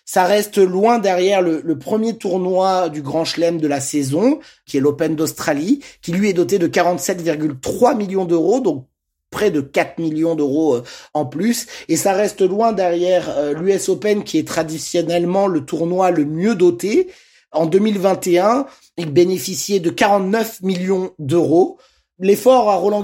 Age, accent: 30-49, French